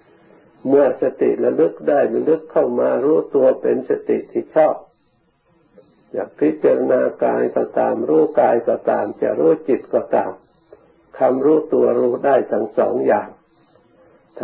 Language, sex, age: Thai, male, 60-79